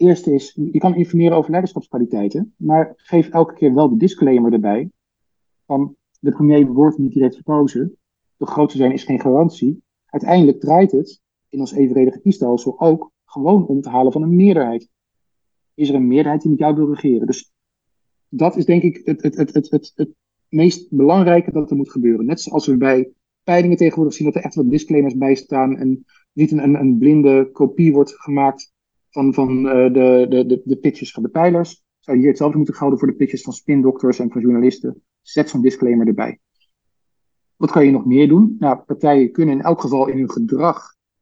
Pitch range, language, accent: 130-155 Hz, Dutch, Dutch